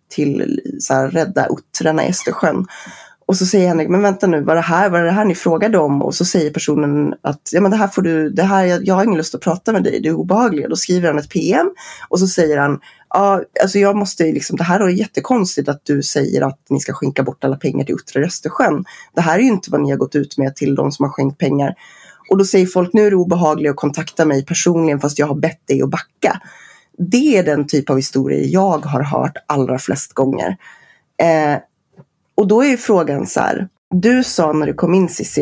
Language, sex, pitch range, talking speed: Swedish, female, 145-195 Hz, 235 wpm